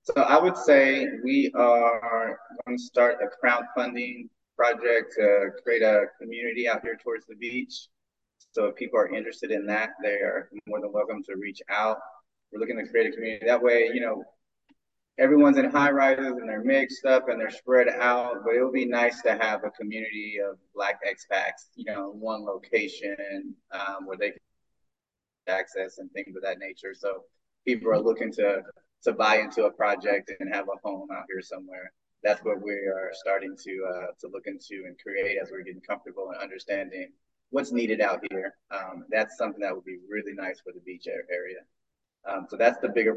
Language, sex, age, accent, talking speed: English, male, 20-39, American, 195 wpm